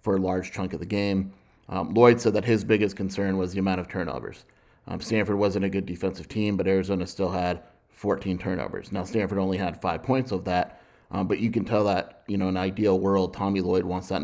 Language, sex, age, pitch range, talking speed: English, male, 30-49, 95-100 Hz, 235 wpm